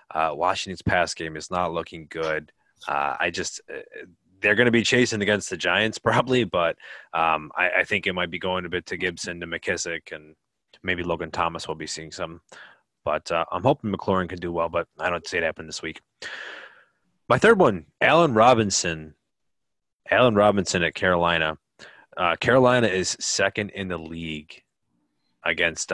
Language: English